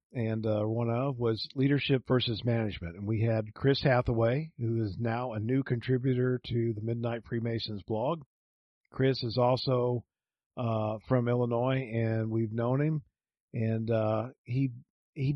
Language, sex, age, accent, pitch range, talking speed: English, male, 50-69, American, 115-135 Hz, 150 wpm